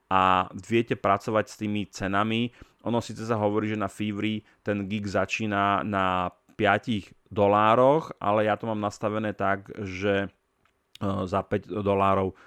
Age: 30-49